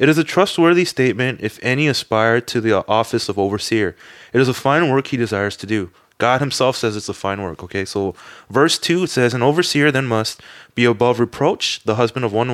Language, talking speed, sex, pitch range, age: English, 215 wpm, male, 105-145 Hz, 20-39